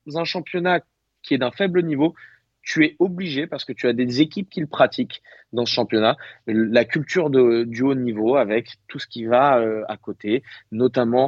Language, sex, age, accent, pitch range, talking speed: French, male, 30-49, French, 120-155 Hz, 195 wpm